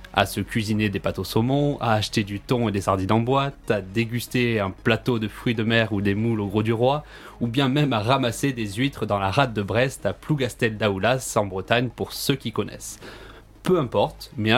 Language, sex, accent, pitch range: French, male, French, 105-130 Hz